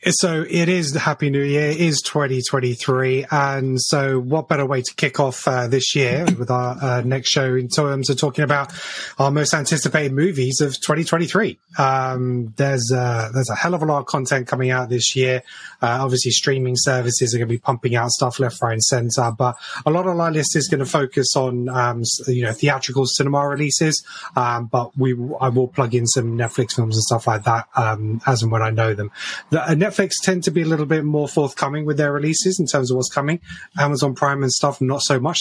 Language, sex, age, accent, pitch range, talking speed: English, male, 20-39, British, 125-150 Hz, 230 wpm